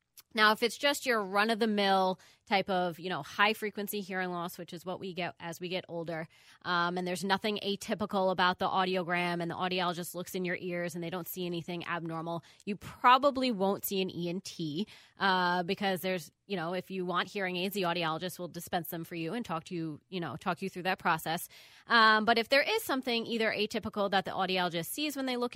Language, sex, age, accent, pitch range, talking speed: English, female, 20-39, American, 170-205 Hz, 215 wpm